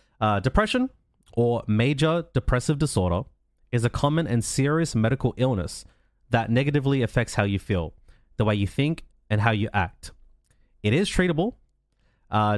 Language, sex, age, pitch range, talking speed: English, male, 30-49, 110-145 Hz, 150 wpm